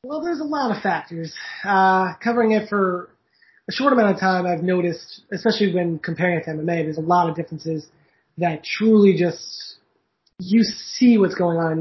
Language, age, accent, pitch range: English, 20-39, American, 165-185 Hz